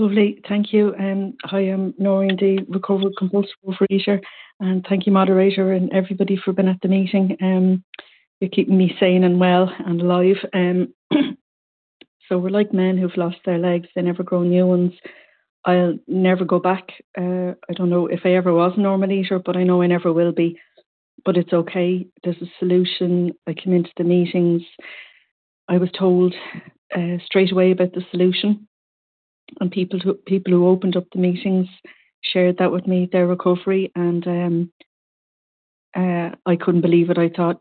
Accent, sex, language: Irish, female, English